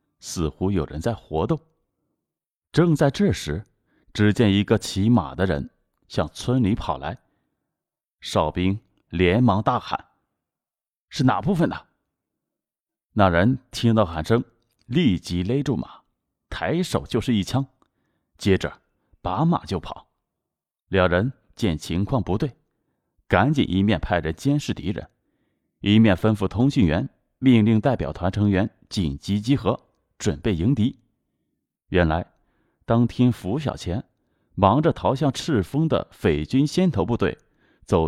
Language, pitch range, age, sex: Chinese, 90-125 Hz, 30-49, male